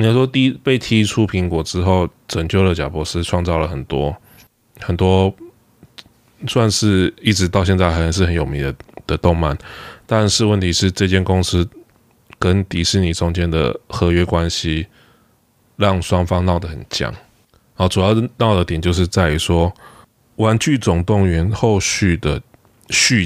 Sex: male